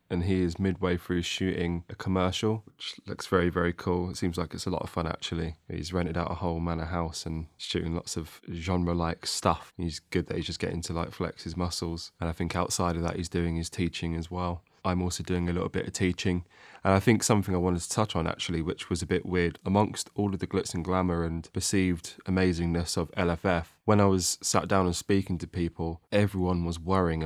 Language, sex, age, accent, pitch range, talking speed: English, male, 20-39, British, 85-95 Hz, 230 wpm